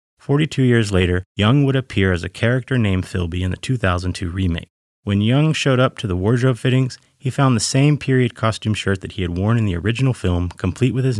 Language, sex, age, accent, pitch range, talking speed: English, male, 30-49, American, 90-125 Hz, 220 wpm